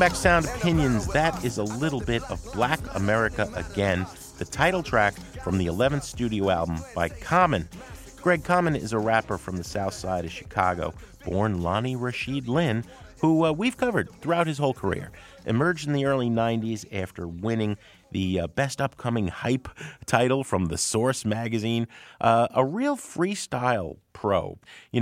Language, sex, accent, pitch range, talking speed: English, male, American, 95-140 Hz, 160 wpm